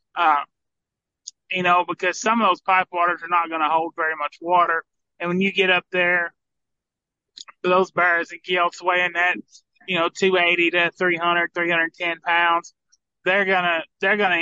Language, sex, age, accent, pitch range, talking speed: English, male, 20-39, American, 165-180 Hz, 185 wpm